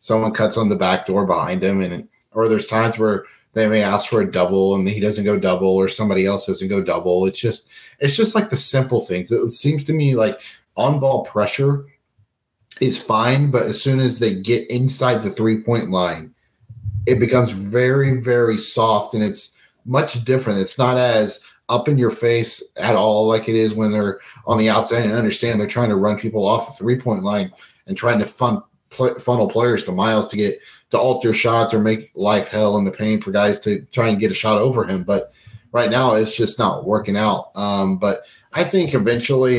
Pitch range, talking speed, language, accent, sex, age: 100-120 Hz, 210 wpm, English, American, male, 30-49